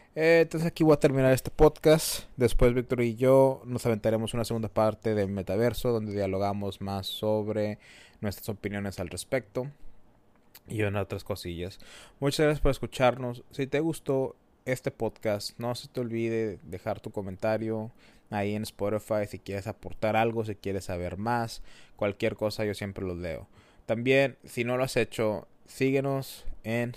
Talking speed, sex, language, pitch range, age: 155 wpm, male, Spanish, 100-120 Hz, 20-39